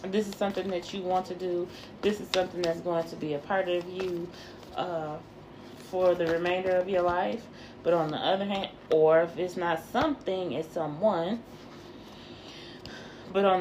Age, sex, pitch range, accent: 20-39, female, 160-185 Hz, American